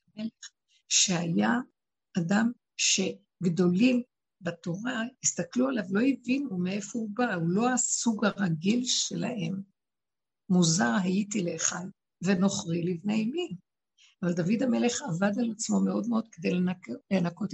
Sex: female